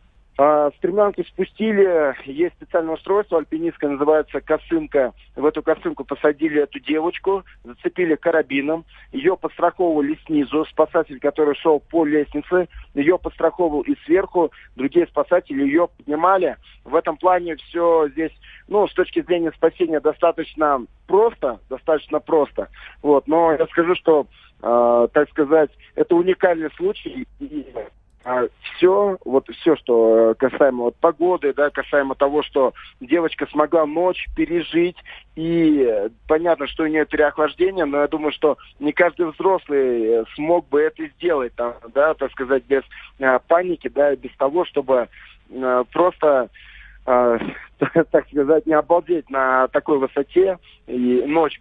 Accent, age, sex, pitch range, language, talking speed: native, 40-59, male, 145-175 Hz, Russian, 125 wpm